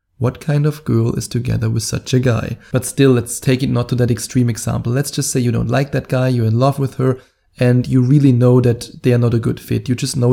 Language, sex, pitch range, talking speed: English, male, 120-135 Hz, 275 wpm